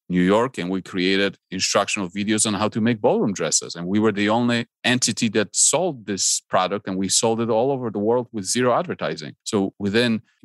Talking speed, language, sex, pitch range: 215 wpm, English, male, 95-110 Hz